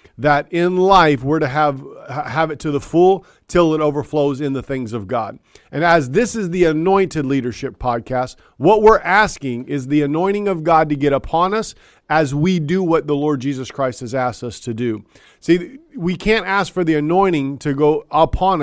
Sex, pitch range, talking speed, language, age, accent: male, 130-170 Hz, 200 wpm, English, 40-59, American